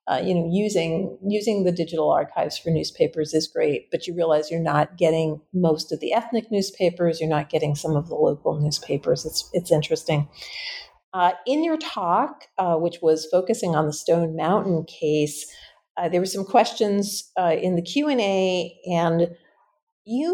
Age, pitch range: 50-69, 160-200 Hz